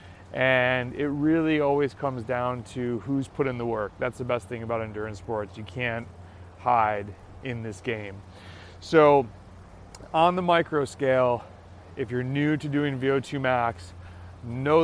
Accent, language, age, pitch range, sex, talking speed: American, English, 30-49, 100-135 Hz, male, 155 wpm